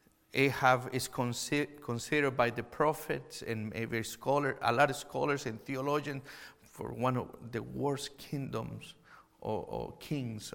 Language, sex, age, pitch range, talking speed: English, male, 50-69, 120-145 Hz, 140 wpm